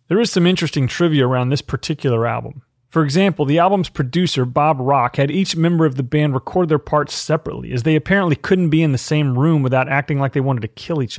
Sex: male